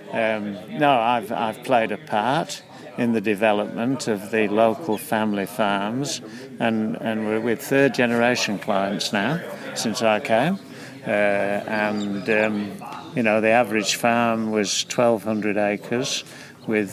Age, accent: 50-69, British